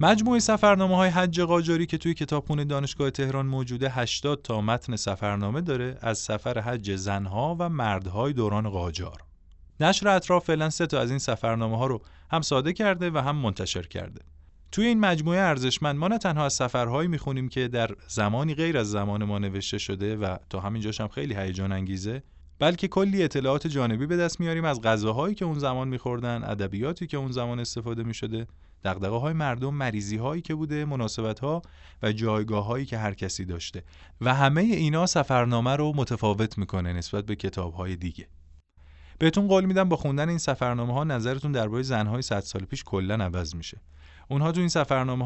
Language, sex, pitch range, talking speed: Persian, male, 100-150 Hz, 175 wpm